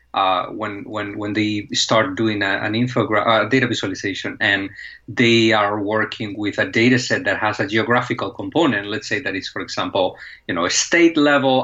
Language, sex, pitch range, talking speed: English, male, 110-135 Hz, 185 wpm